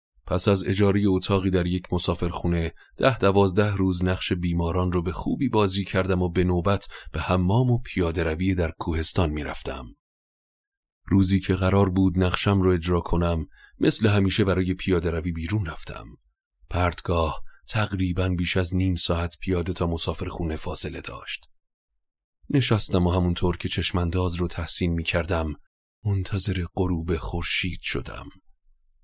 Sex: male